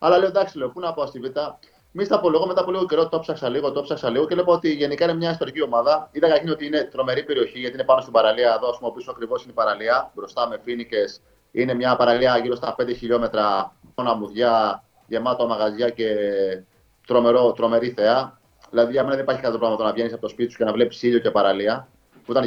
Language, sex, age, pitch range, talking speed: Greek, male, 30-49, 115-165 Hz, 230 wpm